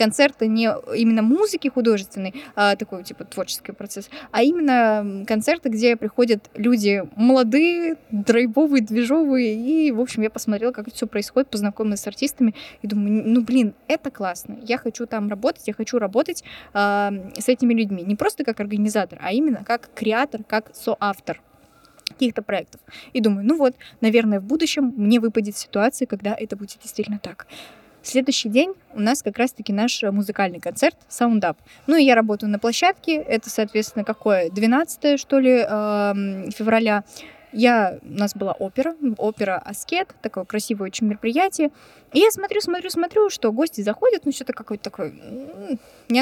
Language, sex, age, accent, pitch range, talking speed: Russian, female, 20-39, native, 210-270 Hz, 155 wpm